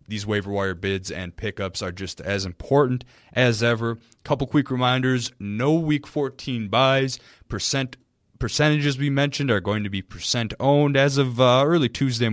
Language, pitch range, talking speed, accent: English, 95-120 Hz, 165 wpm, American